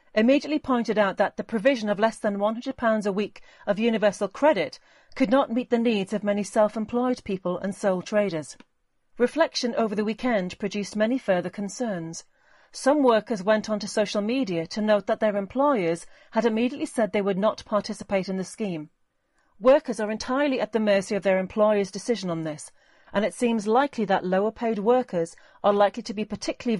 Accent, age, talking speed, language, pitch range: British, 40-59, 180 wpm, English, 200-235 Hz